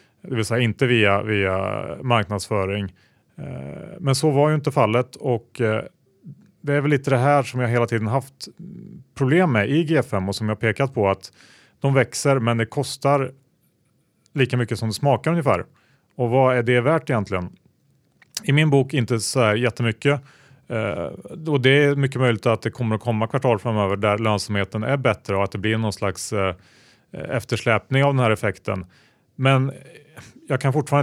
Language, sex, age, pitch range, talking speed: Swedish, male, 30-49, 105-135 Hz, 175 wpm